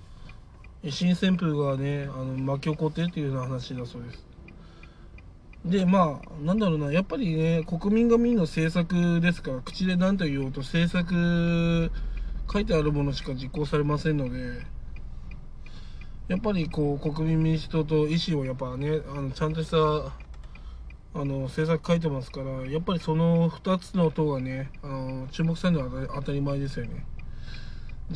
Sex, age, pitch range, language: male, 20-39, 130-170 Hz, Japanese